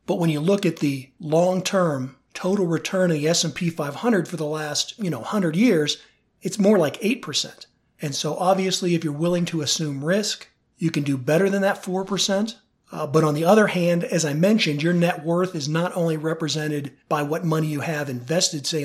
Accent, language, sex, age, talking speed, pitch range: American, English, male, 40-59, 200 wpm, 150-195 Hz